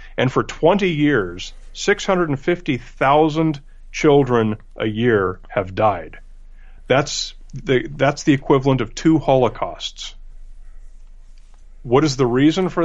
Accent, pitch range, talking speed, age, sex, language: American, 100-130 Hz, 105 wpm, 40-59, male, English